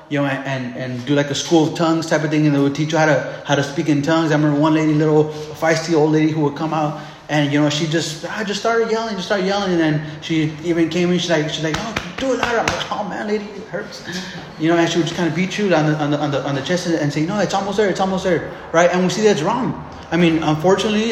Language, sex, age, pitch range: English, male, 20-39, 155-180 Hz